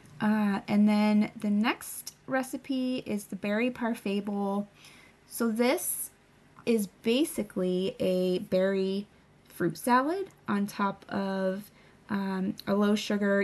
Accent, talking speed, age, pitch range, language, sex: American, 115 wpm, 20-39, 190-225 Hz, English, female